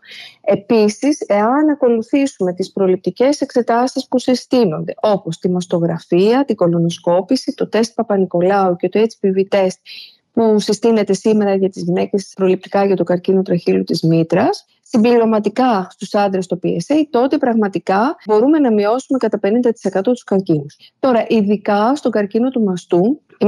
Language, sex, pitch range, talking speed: Greek, female, 190-255 Hz, 140 wpm